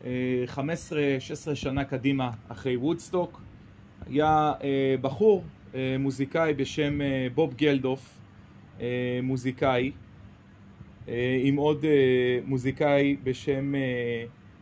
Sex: male